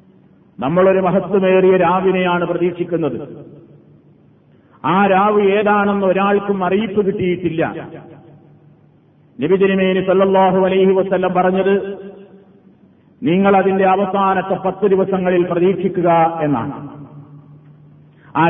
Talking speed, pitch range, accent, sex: 70 wpm, 185-200 Hz, native, male